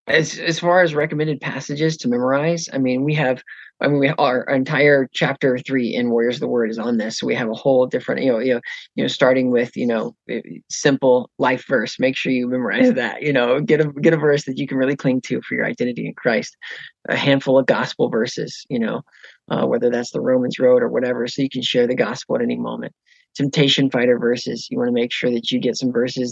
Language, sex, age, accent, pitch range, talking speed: English, male, 30-49, American, 125-165 Hz, 240 wpm